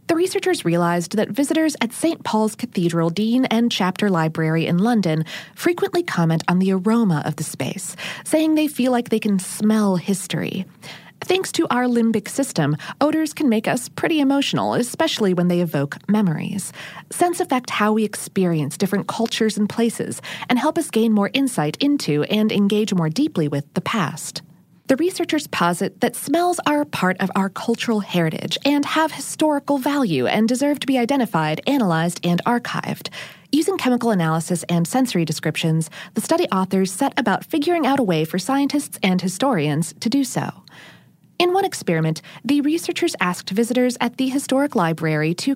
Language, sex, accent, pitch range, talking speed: English, female, American, 175-275 Hz, 170 wpm